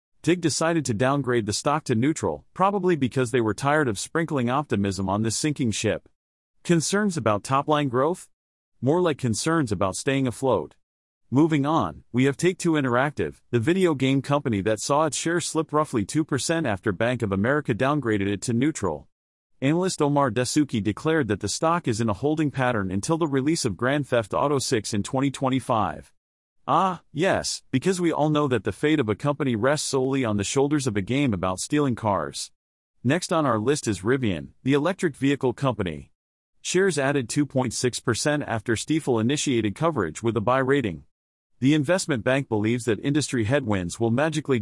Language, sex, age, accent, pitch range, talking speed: English, male, 40-59, American, 110-150 Hz, 175 wpm